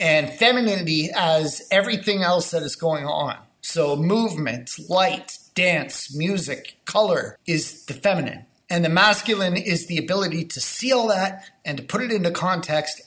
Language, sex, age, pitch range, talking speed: English, male, 30-49, 160-205 Hz, 155 wpm